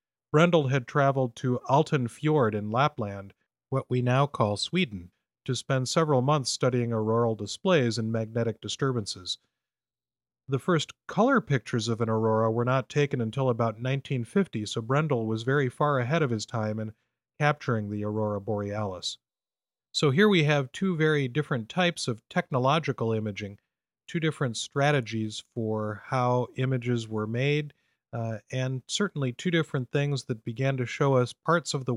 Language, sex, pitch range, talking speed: English, male, 110-135 Hz, 155 wpm